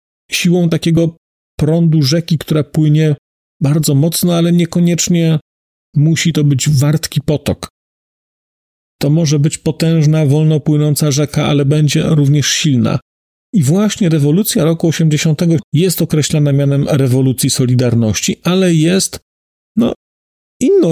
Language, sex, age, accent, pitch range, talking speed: Polish, male, 40-59, native, 130-165 Hz, 110 wpm